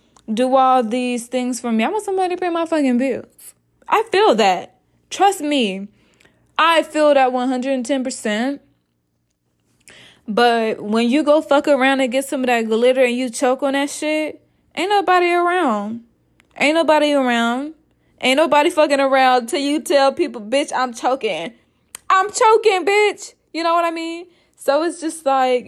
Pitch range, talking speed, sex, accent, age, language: 215-275 Hz, 165 wpm, female, American, 20-39, English